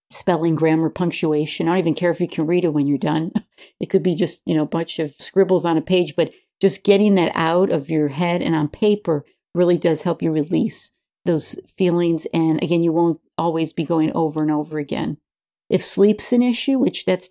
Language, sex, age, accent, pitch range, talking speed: English, female, 50-69, American, 160-185 Hz, 220 wpm